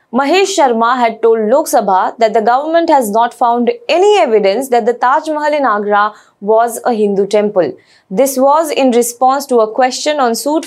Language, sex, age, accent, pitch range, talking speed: English, female, 20-39, Indian, 220-305 Hz, 185 wpm